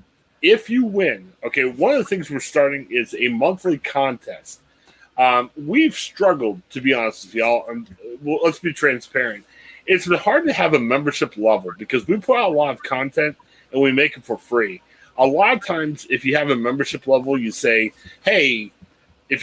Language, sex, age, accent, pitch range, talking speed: English, male, 30-49, American, 130-180 Hz, 195 wpm